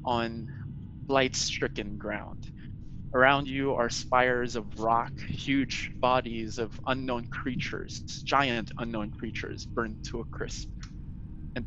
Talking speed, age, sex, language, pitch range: 120 wpm, 20-39, male, English, 110-130 Hz